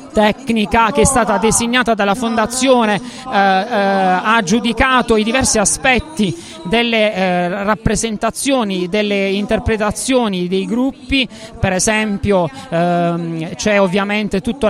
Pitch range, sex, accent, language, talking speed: 195-225 Hz, male, native, Italian, 110 wpm